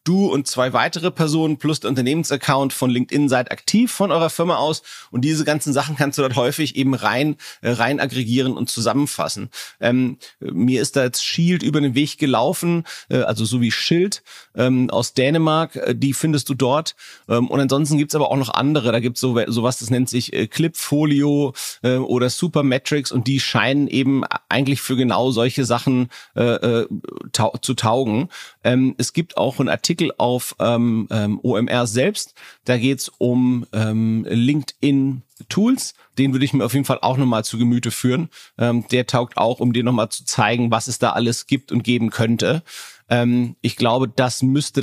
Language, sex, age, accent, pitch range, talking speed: German, male, 40-59, German, 120-140 Hz, 185 wpm